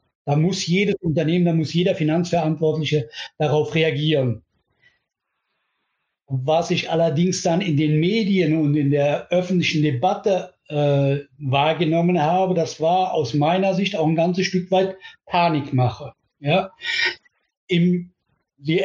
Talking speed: 120 wpm